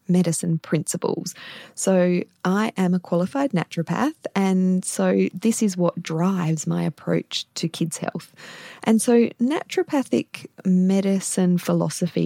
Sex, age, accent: female, 20-39, Australian